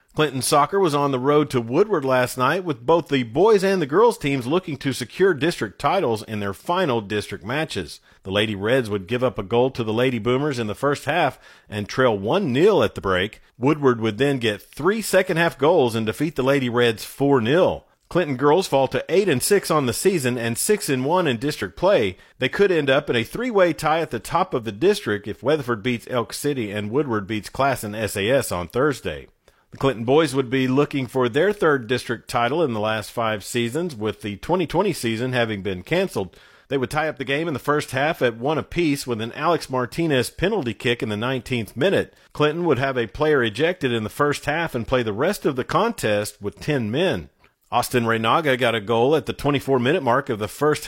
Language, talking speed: English, 215 wpm